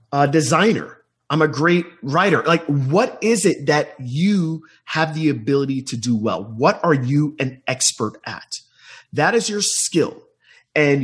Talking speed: 160 wpm